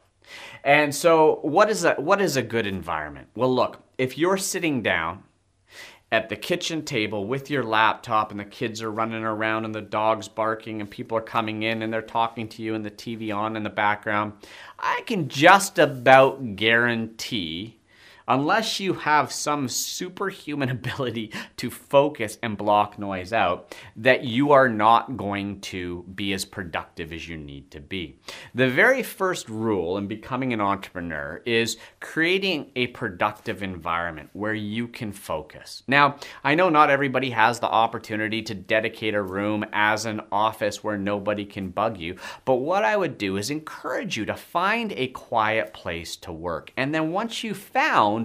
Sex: male